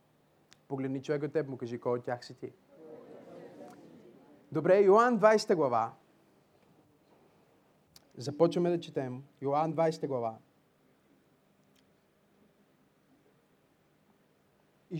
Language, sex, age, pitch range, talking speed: Bulgarian, male, 30-49, 135-185 Hz, 85 wpm